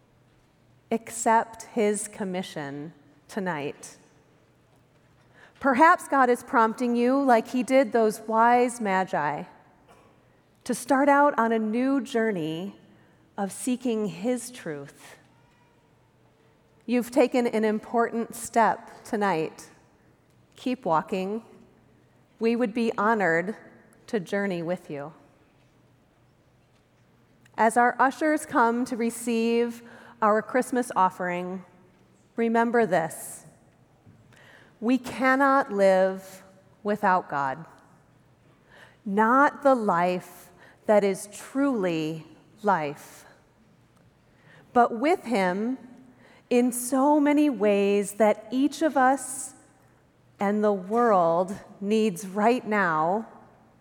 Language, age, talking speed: English, 30-49, 90 wpm